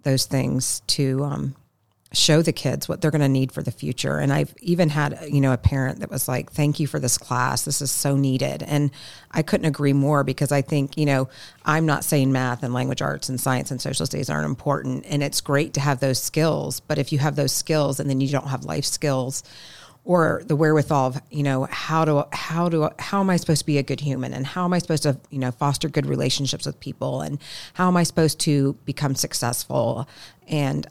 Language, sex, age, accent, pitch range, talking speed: English, female, 40-59, American, 130-150 Hz, 235 wpm